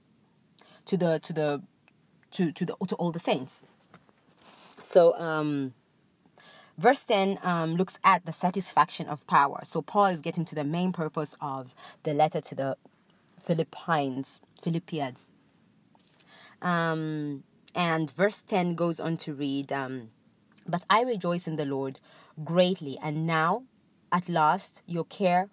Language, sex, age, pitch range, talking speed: English, female, 20-39, 155-190 Hz, 140 wpm